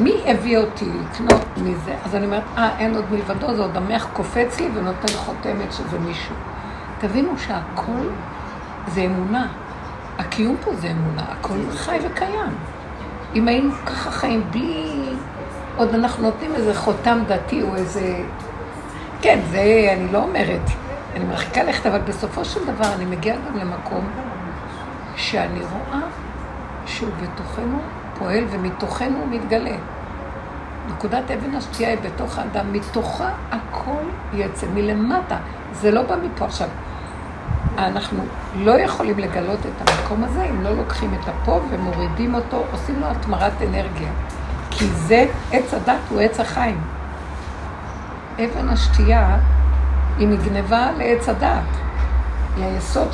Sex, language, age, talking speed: female, Hebrew, 60-79, 130 wpm